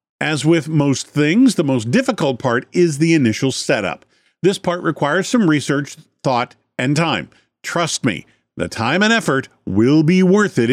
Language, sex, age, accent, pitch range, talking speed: English, male, 50-69, American, 120-180 Hz, 170 wpm